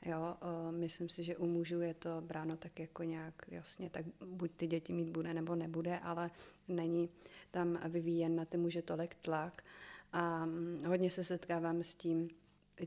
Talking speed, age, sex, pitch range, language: 185 wpm, 30-49, female, 165-175 Hz, Czech